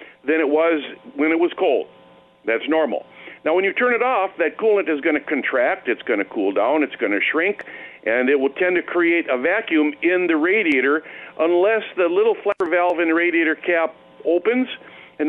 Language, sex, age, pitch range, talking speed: English, male, 50-69, 135-195 Hz, 205 wpm